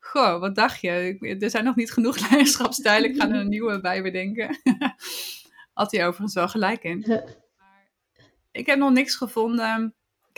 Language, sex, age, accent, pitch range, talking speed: Dutch, female, 20-39, Dutch, 205-250 Hz, 170 wpm